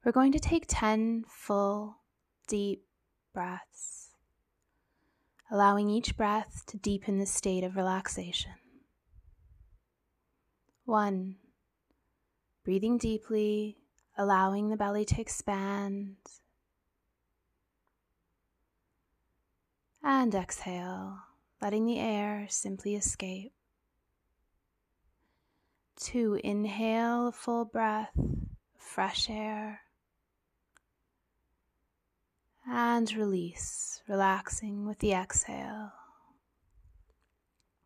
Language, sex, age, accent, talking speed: English, female, 20-39, American, 70 wpm